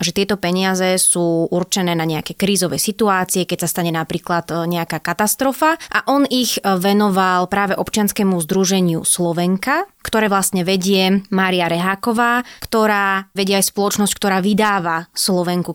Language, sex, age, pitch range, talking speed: Slovak, female, 20-39, 175-215 Hz, 135 wpm